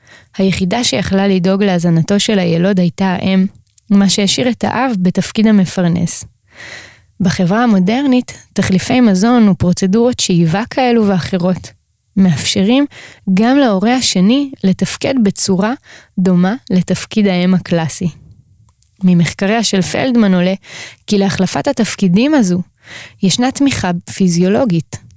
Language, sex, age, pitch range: Hebrew, female, 20-39, 175-220 Hz